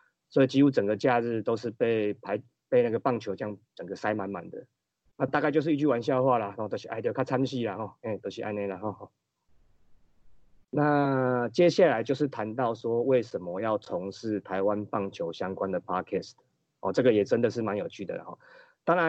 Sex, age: male, 30-49